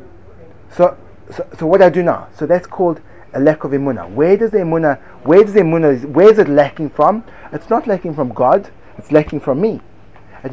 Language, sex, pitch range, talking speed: English, male, 110-185 Hz, 205 wpm